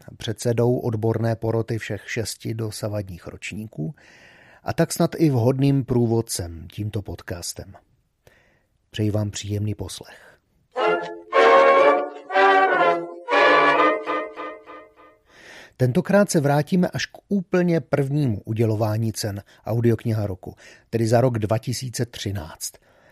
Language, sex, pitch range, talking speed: Slovak, male, 105-135 Hz, 90 wpm